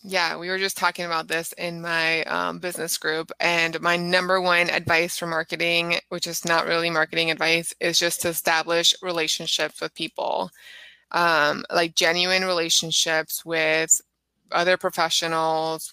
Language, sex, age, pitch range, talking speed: English, female, 20-39, 165-185 Hz, 145 wpm